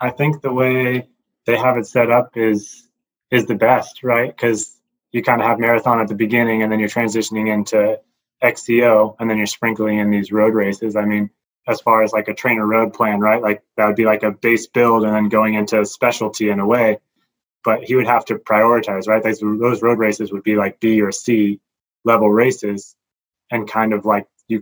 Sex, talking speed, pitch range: male, 215 wpm, 105-120 Hz